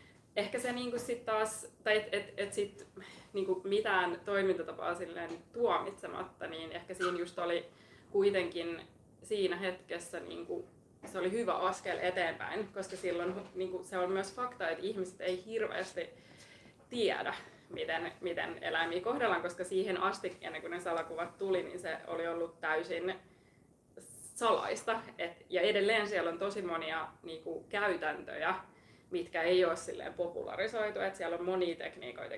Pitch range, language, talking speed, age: 175-215 Hz, Finnish, 135 wpm, 20-39